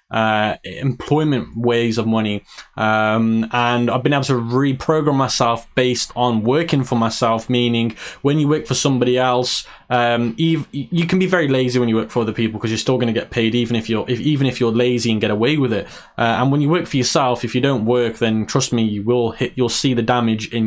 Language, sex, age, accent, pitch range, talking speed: English, male, 20-39, British, 115-140 Hz, 230 wpm